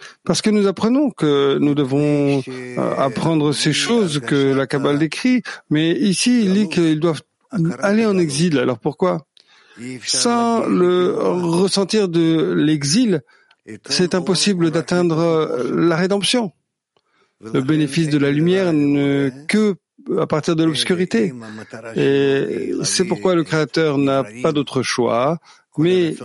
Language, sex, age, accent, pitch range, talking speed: English, male, 50-69, French, 135-180 Hz, 130 wpm